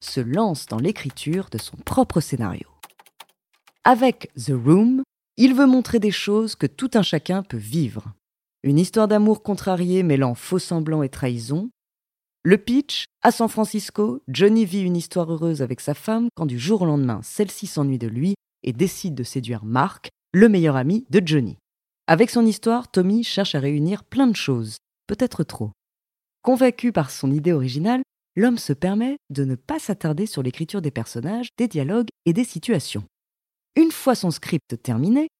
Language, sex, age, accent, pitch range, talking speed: French, female, 30-49, French, 145-235 Hz, 170 wpm